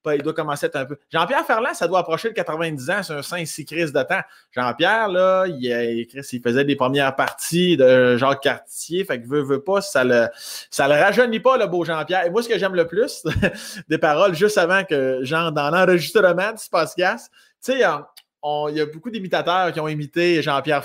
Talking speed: 220 wpm